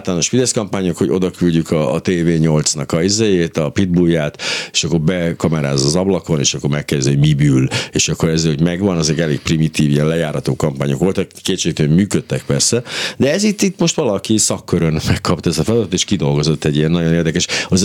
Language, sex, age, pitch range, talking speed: Hungarian, male, 60-79, 80-105 Hz, 195 wpm